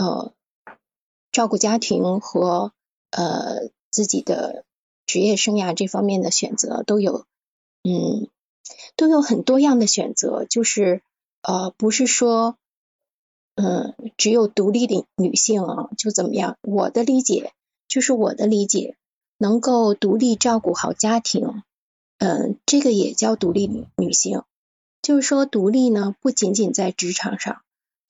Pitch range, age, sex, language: 200-240 Hz, 20-39, female, Chinese